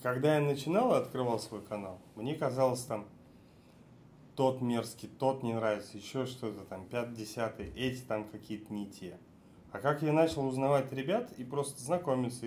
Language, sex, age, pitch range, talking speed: Russian, male, 30-49, 105-135 Hz, 160 wpm